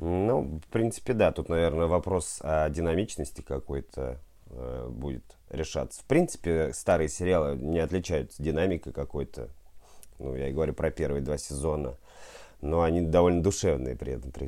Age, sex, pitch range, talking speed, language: 30-49, male, 75-90 Hz, 145 wpm, Russian